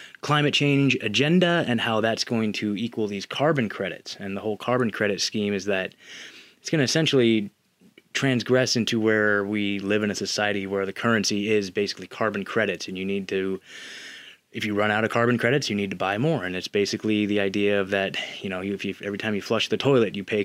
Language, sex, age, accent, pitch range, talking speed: English, male, 20-39, American, 100-130 Hz, 215 wpm